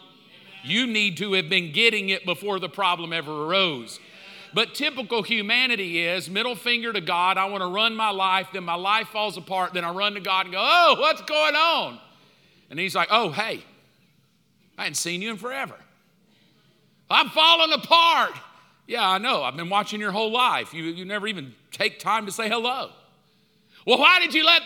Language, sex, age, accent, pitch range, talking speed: English, male, 50-69, American, 170-220 Hz, 195 wpm